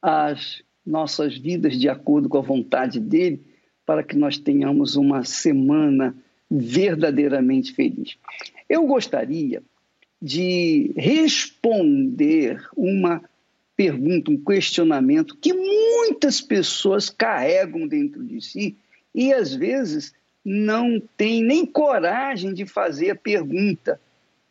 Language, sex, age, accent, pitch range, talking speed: Portuguese, male, 50-69, Brazilian, 195-295 Hz, 105 wpm